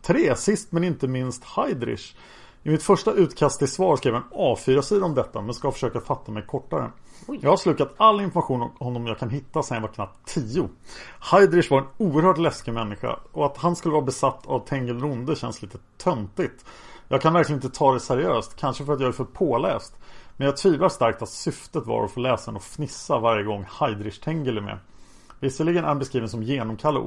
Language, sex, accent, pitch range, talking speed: Swedish, male, Norwegian, 110-145 Hz, 205 wpm